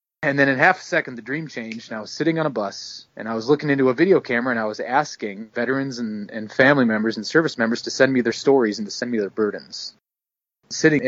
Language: English